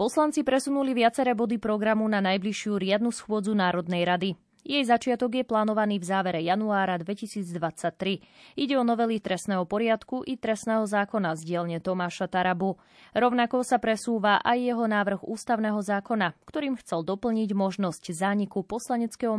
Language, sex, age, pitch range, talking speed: Slovak, female, 20-39, 185-230 Hz, 140 wpm